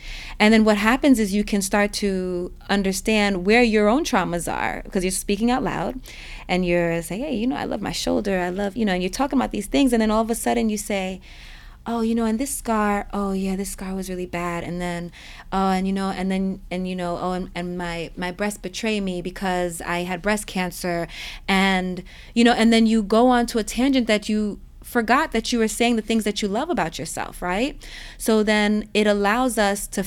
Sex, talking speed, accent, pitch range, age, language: female, 235 wpm, American, 190-245 Hz, 30-49, English